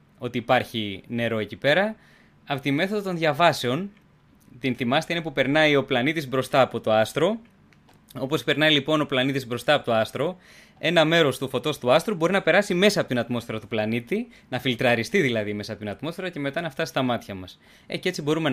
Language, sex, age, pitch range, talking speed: Greek, male, 20-39, 115-155 Hz, 200 wpm